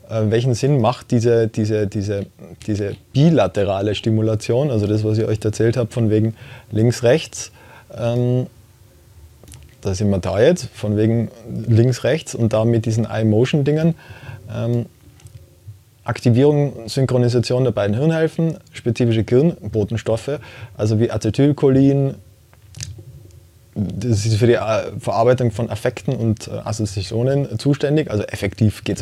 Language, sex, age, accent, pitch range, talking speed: German, male, 20-39, German, 105-125 Hz, 125 wpm